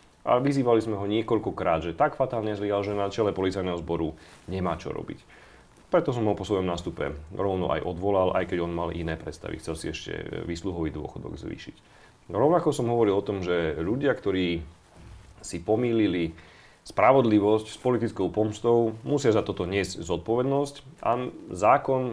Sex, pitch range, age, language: male, 85-110 Hz, 30-49, Slovak